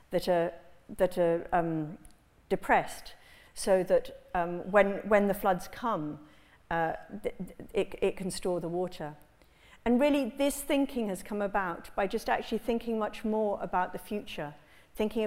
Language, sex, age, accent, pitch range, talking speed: English, female, 50-69, British, 175-220 Hz, 155 wpm